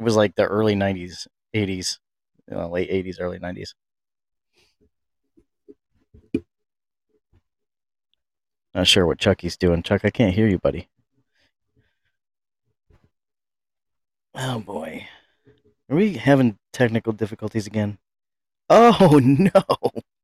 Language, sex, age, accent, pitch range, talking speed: English, male, 30-49, American, 100-130 Hz, 95 wpm